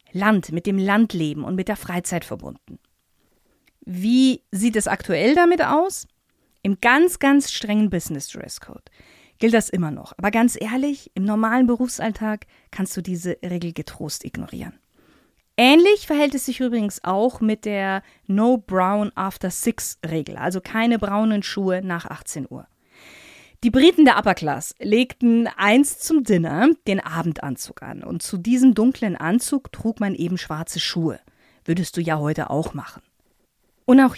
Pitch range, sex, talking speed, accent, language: 175-240 Hz, female, 155 wpm, German, German